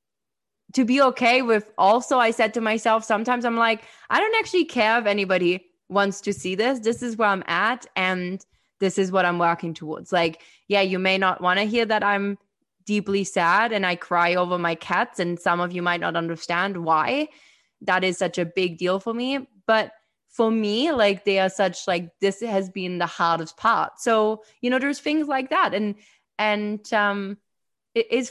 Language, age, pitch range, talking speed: English, 20-39, 180-225 Hz, 195 wpm